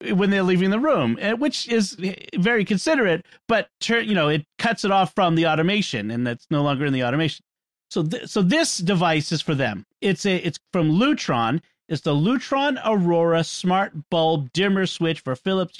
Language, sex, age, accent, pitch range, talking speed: English, male, 40-59, American, 155-200 Hz, 185 wpm